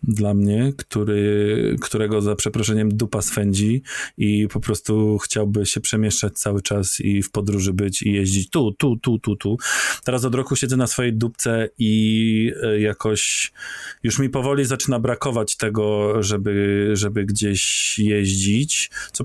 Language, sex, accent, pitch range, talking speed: Polish, male, native, 105-125 Hz, 145 wpm